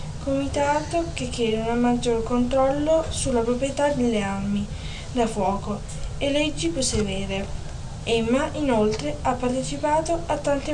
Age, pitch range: 20-39, 215-280 Hz